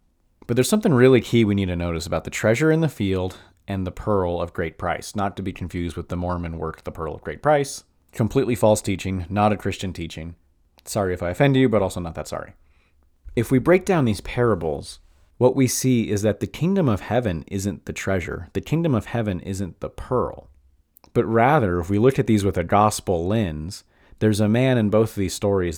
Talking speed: 220 wpm